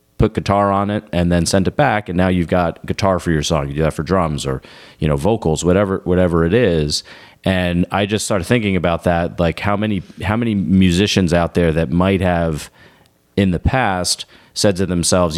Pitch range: 80-95 Hz